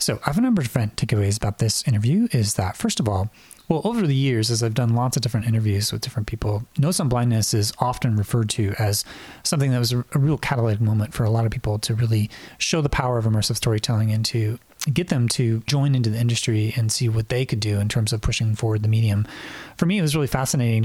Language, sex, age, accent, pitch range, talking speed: English, male, 30-49, American, 110-135 Hz, 245 wpm